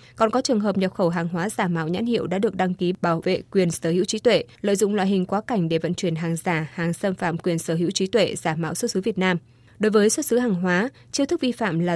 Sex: female